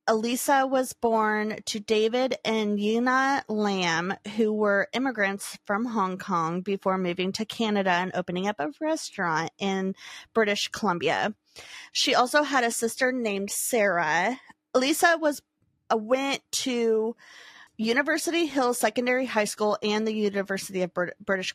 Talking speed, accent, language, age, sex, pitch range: 130 wpm, American, English, 30-49, female, 205-255 Hz